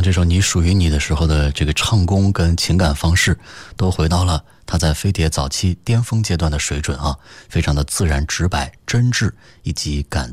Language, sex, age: Chinese, male, 20-39